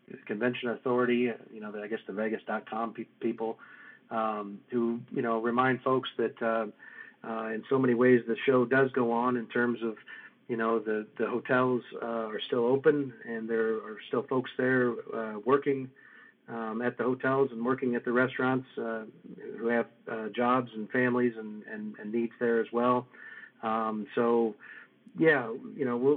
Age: 40-59